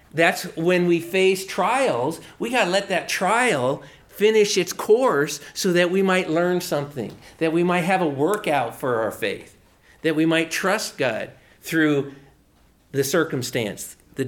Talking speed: 160 wpm